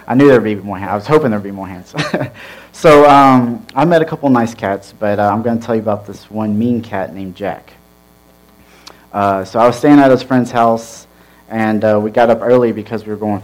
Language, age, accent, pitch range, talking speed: English, 30-49, American, 100-120 Hz, 250 wpm